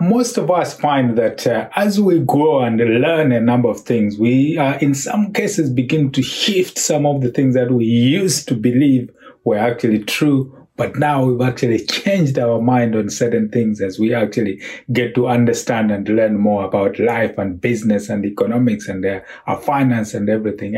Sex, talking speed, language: male, 190 wpm, English